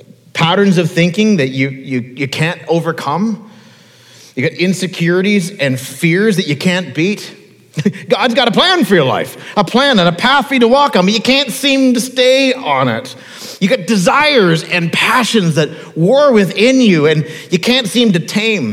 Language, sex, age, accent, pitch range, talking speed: English, male, 40-59, American, 130-200 Hz, 185 wpm